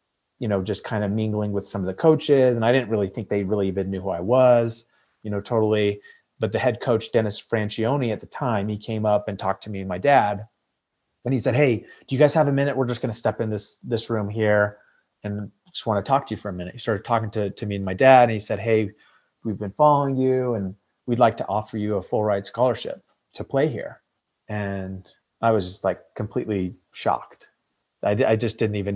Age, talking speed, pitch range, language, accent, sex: 30-49, 245 wpm, 95-115 Hz, English, American, male